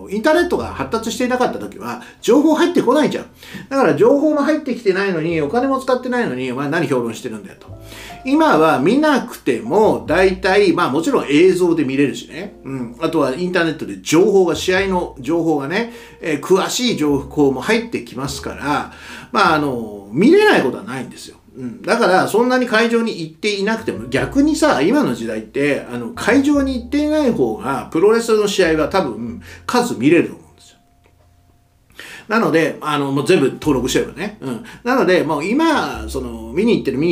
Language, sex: Japanese, male